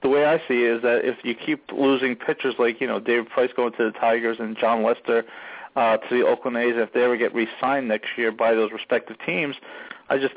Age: 40-59